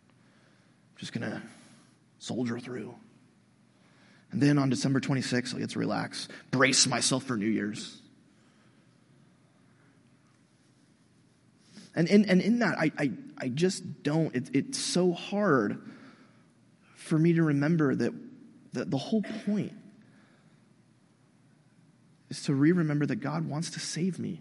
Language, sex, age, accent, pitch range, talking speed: English, male, 30-49, American, 135-185 Hz, 125 wpm